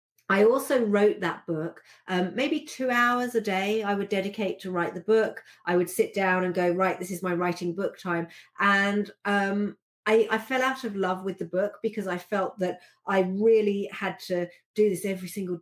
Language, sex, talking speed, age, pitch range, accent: English, female, 205 wpm, 40-59, 175-220 Hz, British